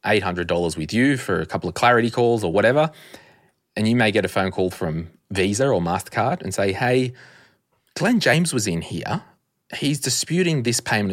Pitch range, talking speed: 95-120 Hz, 180 wpm